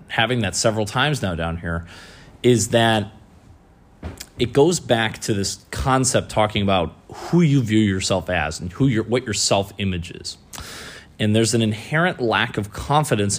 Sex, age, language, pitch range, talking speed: male, 30-49, English, 95-115 Hz, 155 wpm